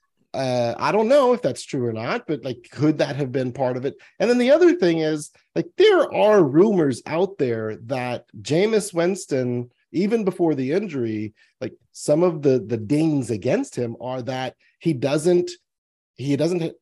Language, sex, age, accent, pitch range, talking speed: English, male, 40-59, American, 120-175 Hz, 180 wpm